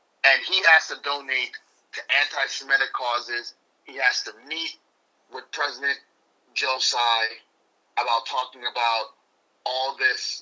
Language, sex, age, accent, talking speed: English, male, 30-49, American, 125 wpm